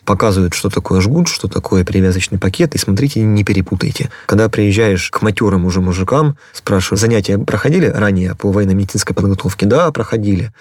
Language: Russian